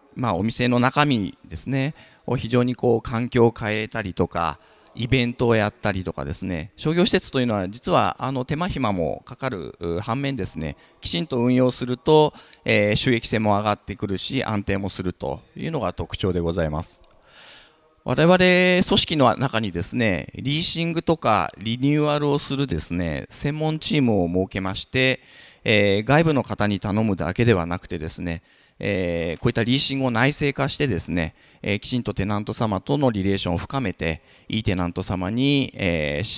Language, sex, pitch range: Japanese, male, 95-135 Hz